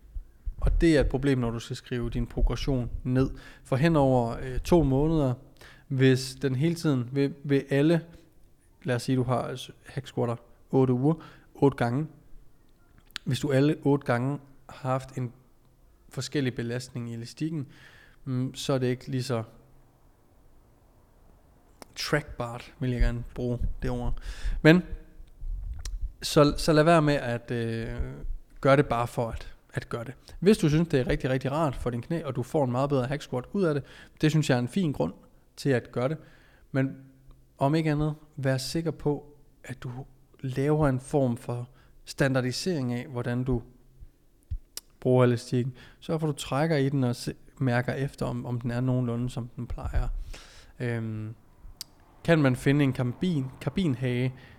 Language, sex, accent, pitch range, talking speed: Danish, male, native, 120-140 Hz, 170 wpm